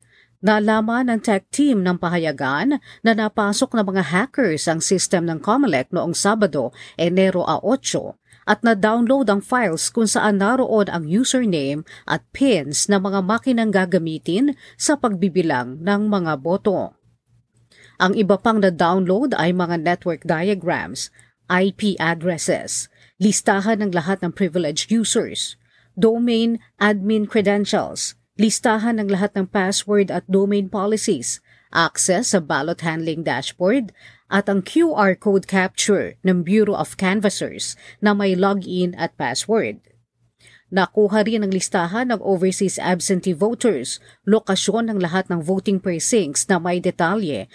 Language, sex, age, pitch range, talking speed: Filipino, female, 40-59, 175-215 Hz, 130 wpm